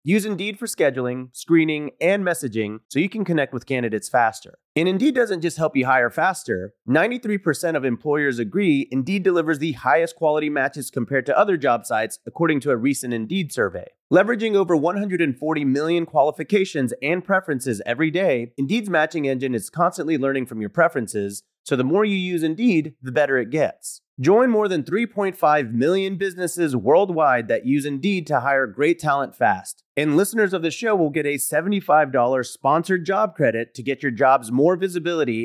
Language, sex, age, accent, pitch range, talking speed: English, male, 30-49, American, 135-190 Hz, 175 wpm